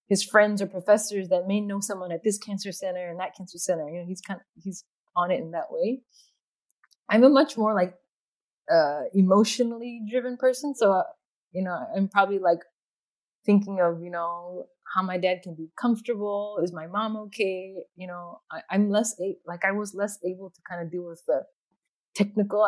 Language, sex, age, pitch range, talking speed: English, female, 20-39, 175-210 Hz, 200 wpm